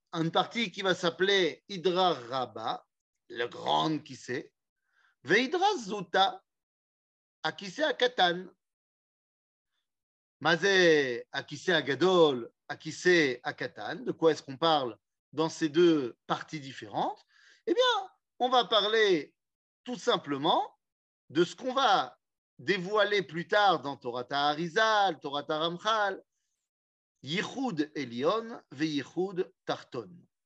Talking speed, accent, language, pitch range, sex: 115 wpm, French, French, 150-235 Hz, male